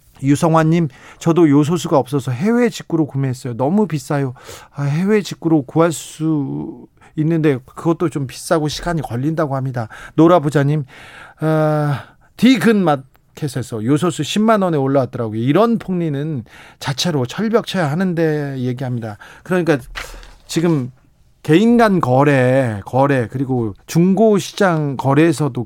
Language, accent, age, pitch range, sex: Korean, native, 40-59, 130-170 Hz, male